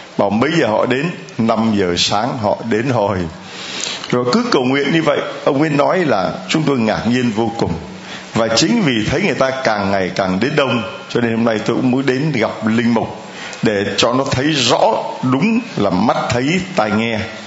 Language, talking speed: Vietnamese, 205 wpm